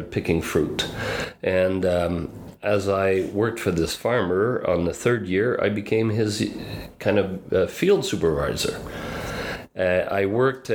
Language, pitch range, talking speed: English, 90-115 Hz, 140 wpm